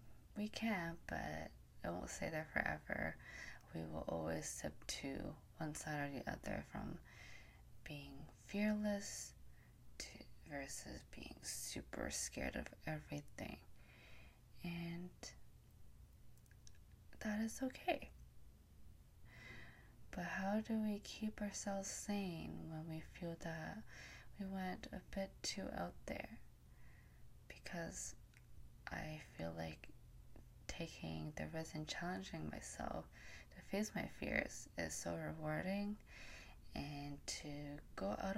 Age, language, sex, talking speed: 20-39, English, female, 110 wpm